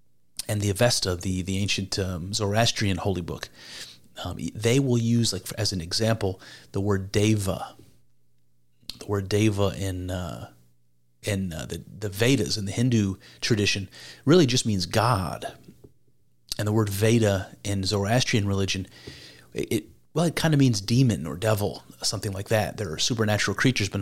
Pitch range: 95-115 Hz